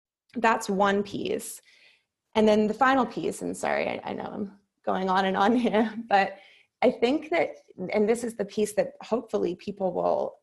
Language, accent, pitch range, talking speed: English, American, 185-225 Hz, 185 wpm